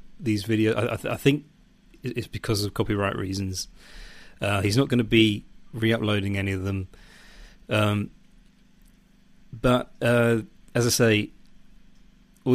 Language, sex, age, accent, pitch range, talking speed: English, male, 30-49, British, 100-120 Hz, 135 wpm